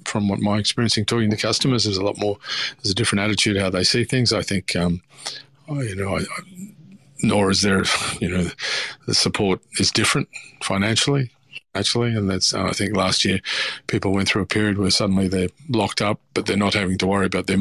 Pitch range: 95-120 Hz